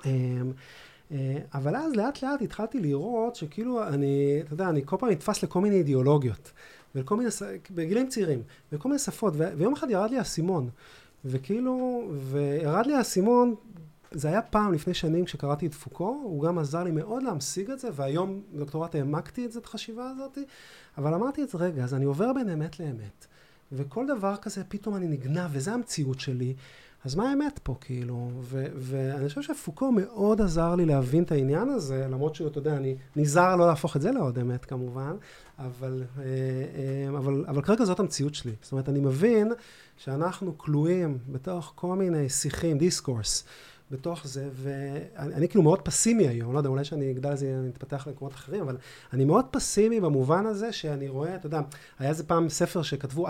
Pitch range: 140-195 Hz